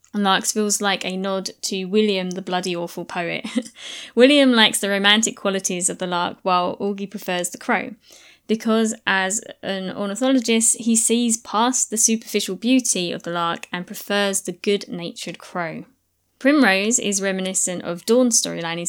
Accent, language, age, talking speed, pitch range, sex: British, English, 20-39, 155 wpm, 180-230 Hz, female